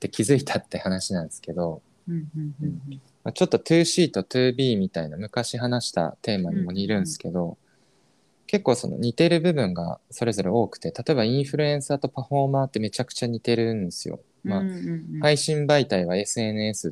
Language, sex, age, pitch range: Japanese, male, 20-39, 95-155 Hz